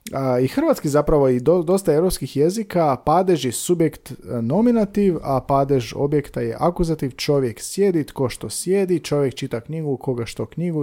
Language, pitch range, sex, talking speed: Croatian, 115-170 Hz, male, 155 wpm